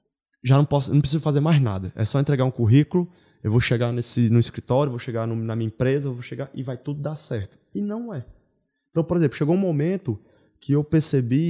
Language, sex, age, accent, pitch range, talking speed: Portuguese, male, 20-39, Brazilian, 125-170 Hz, 235 wpm